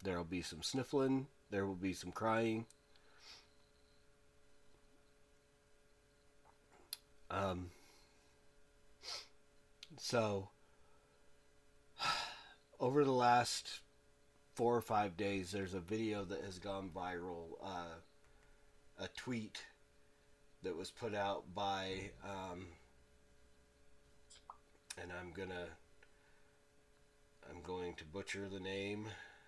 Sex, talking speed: male, 90 wpm